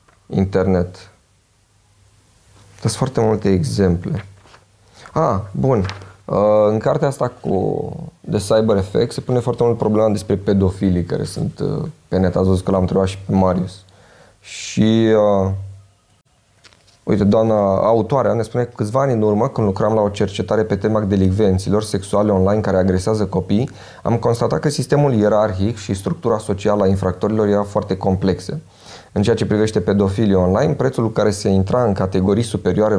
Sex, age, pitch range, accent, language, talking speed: male, 20-39, 95-115 Hz, native, Romanian, 155 wpm